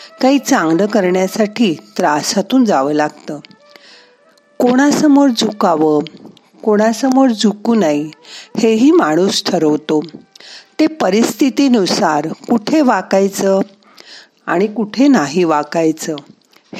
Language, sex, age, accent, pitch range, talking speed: Marathi, female, 50-69, native, 180-265 Hz, 80 wpm